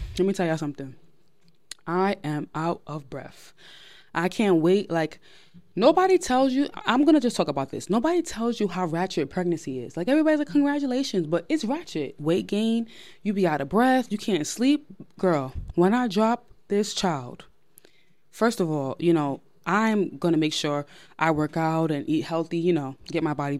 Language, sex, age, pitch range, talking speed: English, female, 20-39, 160-225 Hz, 185 wpm